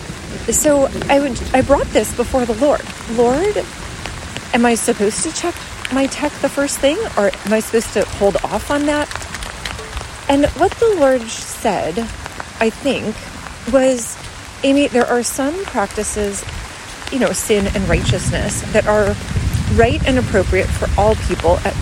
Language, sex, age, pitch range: English, female, 30-49, 210-275 Hz